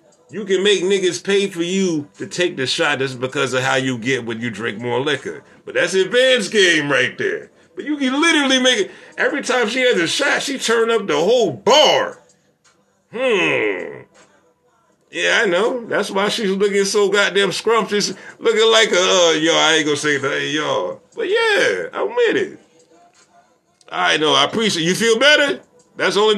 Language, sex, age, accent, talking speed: English, male, 50-69, American, 195 wpm